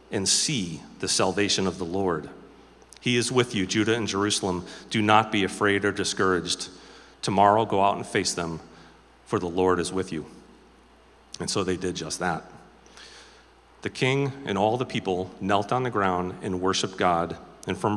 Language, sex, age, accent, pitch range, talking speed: English, male, 40-59, American, 95-115 Hz, 175 wpm